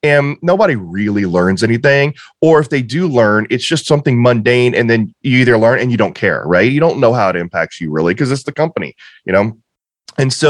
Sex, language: male, English